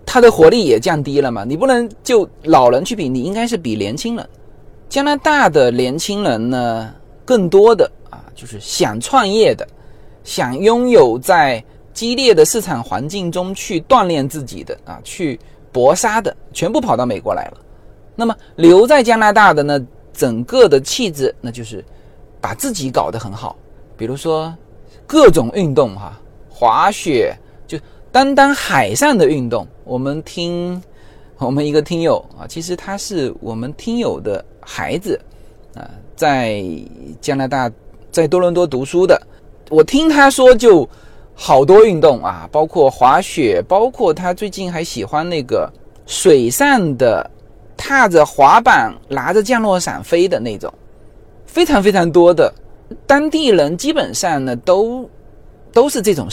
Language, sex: Chinese, male